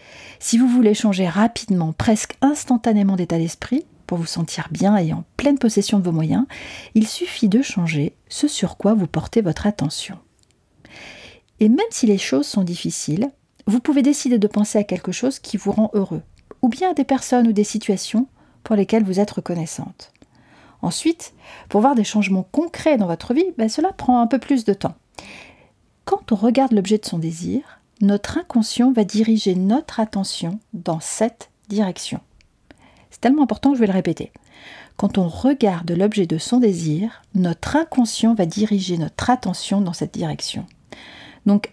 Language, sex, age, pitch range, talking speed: French, female, 40-59, 190-245 Hz, 175 wpm